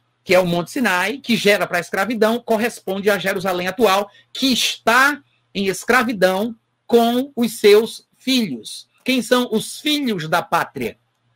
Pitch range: 160-225 Hz